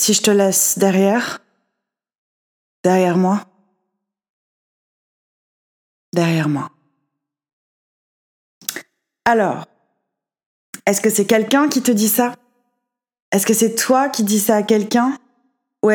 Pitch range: 190-250 Hz